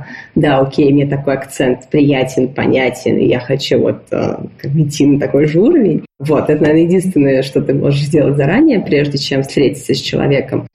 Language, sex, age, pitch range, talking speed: Russian, female, 20-39, 140-165 Hz, 175 wpm